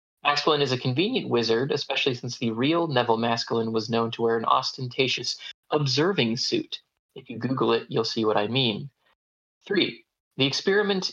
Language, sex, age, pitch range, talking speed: English, male, 20-39, 115-140 Hz, 165 wpm